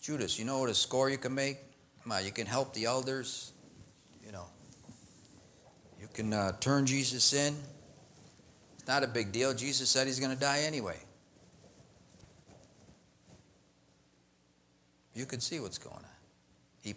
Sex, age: male, 50-69